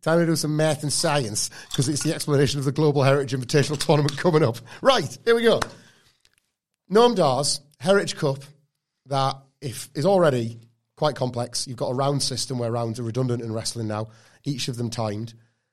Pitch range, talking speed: 120-160 Hz, 185 wpm